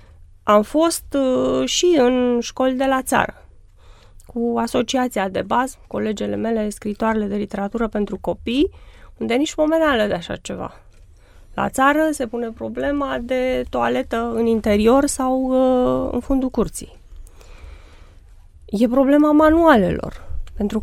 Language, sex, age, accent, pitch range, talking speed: Romanian, female, 20-39, native, 205-260 Hz, 120 wpm